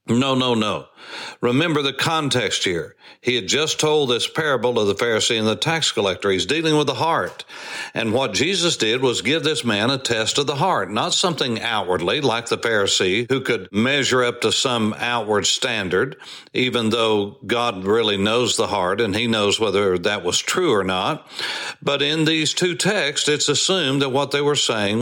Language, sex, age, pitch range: English, male, 60-79, 115-155 Hz